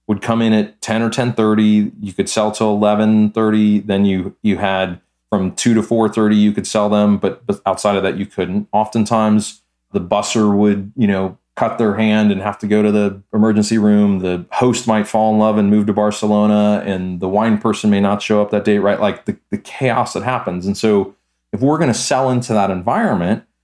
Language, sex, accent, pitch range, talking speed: English, male, American, 95-110 Hz, 215 wpm